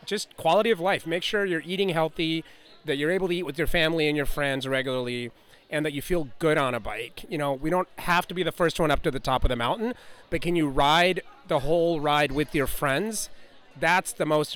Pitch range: 130-165 Hz